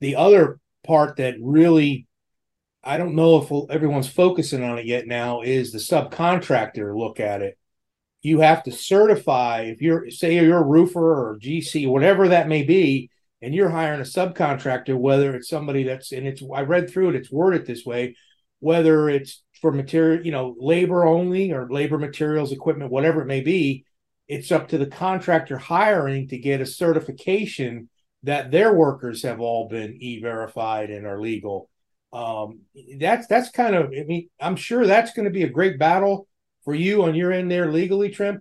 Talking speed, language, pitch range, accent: 180 wpm, English, 130-175 Hz, American